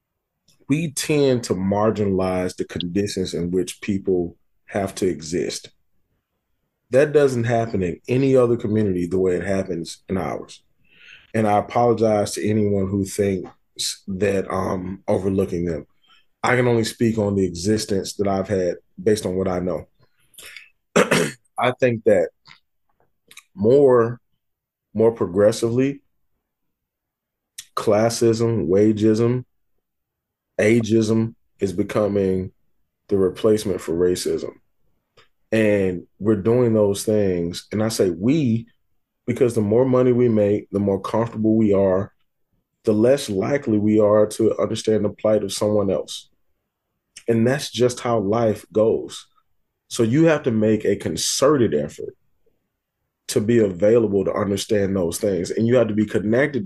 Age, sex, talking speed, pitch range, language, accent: 30-49, male, 130 wpm, 95-115 Hz, English, American